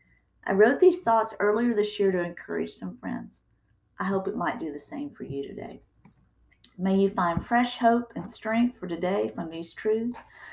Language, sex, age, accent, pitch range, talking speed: English, female, 40-59, American, 170-230 Hz, 190 wpm